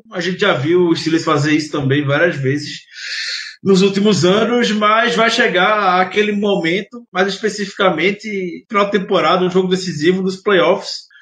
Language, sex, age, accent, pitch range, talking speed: Portuguese, male, 20-39, Brazilian, 160-195 Hz, 150 wpm